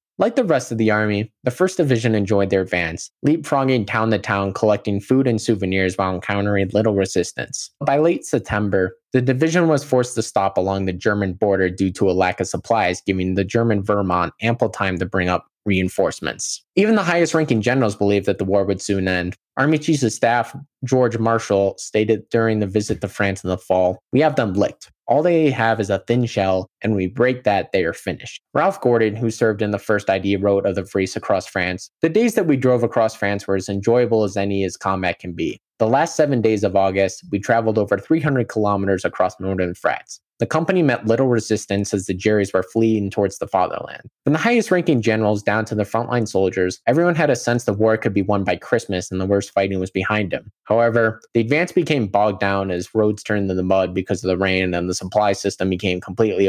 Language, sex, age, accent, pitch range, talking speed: English, male, 20-39, American, 95-120 Hz, 215 wpm